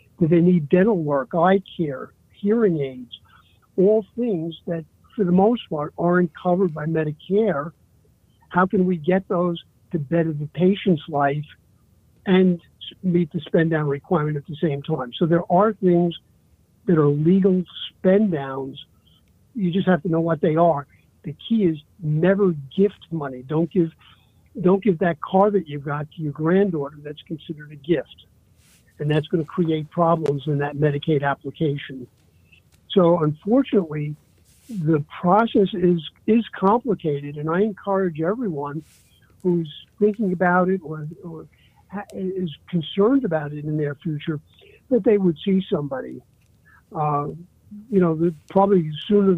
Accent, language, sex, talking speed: American, English, male, 150 wpm